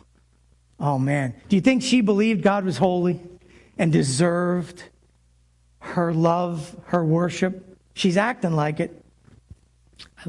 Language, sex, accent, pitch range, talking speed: English, male, American, 155-210 Hz, 120 wpm